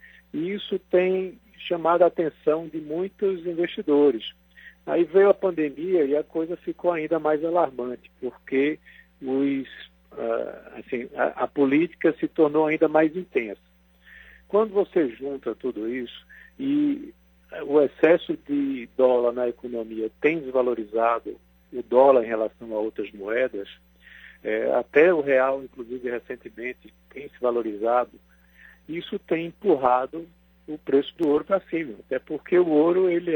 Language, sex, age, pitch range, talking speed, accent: Portuguese, male, 50-69, 120-175 Hz, 130 wpm, Brazilian